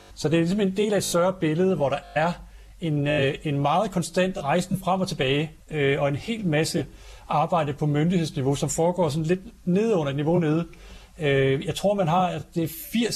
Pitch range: 140-180 Hz